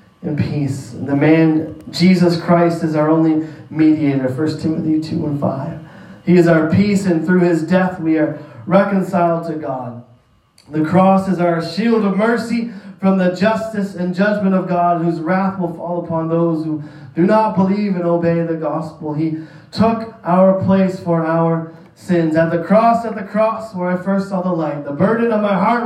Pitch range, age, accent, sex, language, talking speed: 155-190 Hz, 20-39, American, male, English, 190 wpm